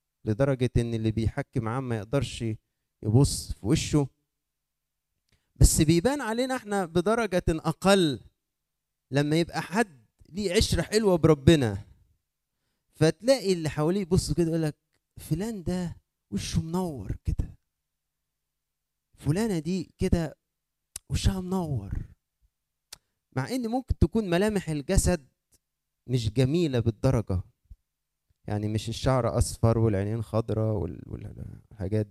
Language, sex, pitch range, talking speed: Arabic, male, 115-170 Hz, 105 wpm